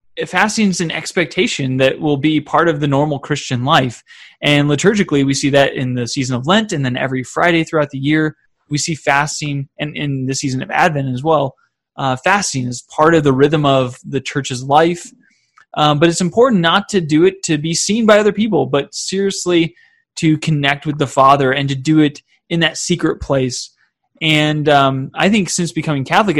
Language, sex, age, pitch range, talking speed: English, male, 20-39, 135-165 Hz, 200 wpm